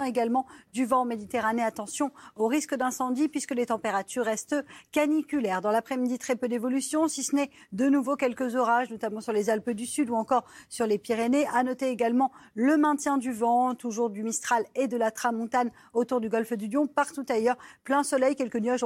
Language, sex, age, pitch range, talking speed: French, female, 40-59, 225-270 Hz, 195 wpm